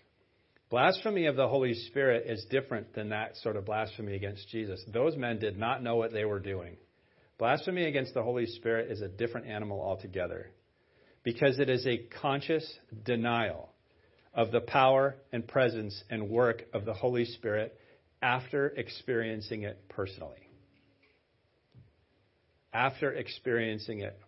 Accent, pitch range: American, 110-130 Hz